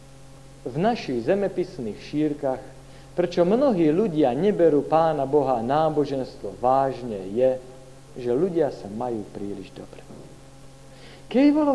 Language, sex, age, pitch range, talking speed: Slovak, male, 50-69, 135-210 Hz, 105 wpm